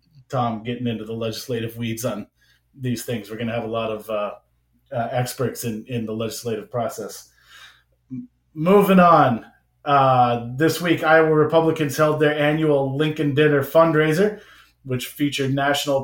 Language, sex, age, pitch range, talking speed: English, male, 30-49, 125-155 Hz, 150 wpm